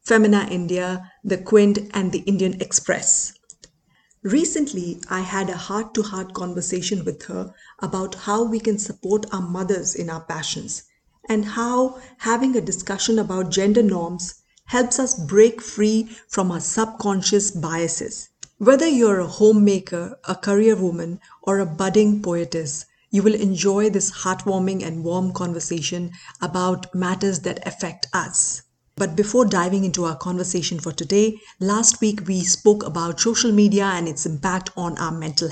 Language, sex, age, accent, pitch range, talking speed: Hindi, female, 50-69, native, 175-210 Hz, 150 wpm